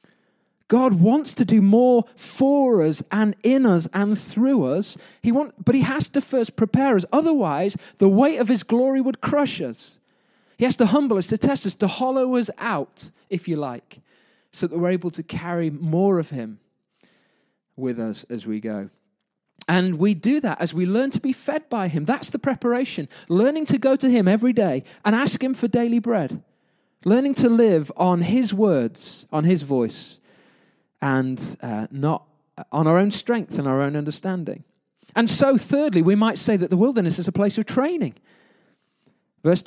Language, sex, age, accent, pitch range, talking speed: English, male, 30-49, British, 180-250 Hz, 185 wpm